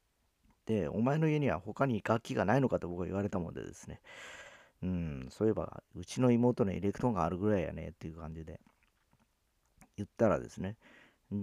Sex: male